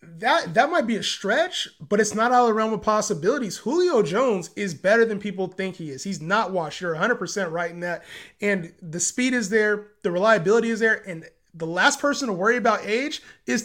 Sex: male